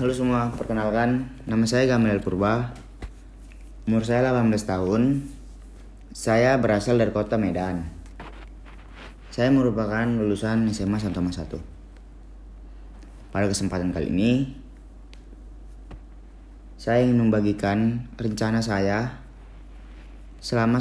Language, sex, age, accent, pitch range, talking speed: Indonesian, male, 30-49, native, 100-125 Hz, 90 wpm